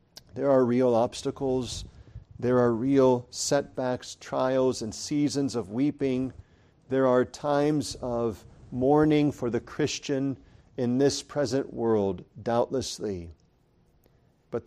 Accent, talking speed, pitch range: American, 110 wpm, 100-135 Hz